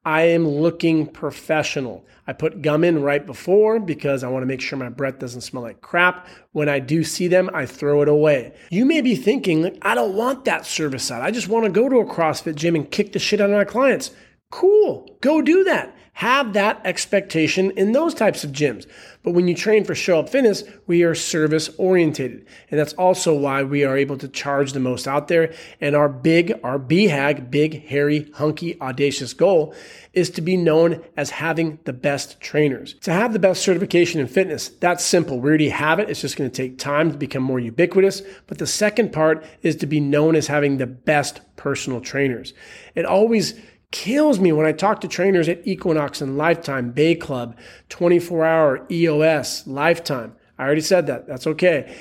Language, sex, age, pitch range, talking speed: English, male, 40-59, 145-190 Hz, 200 wpm